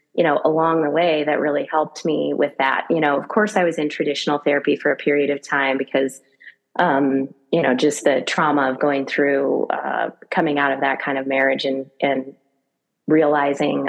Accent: American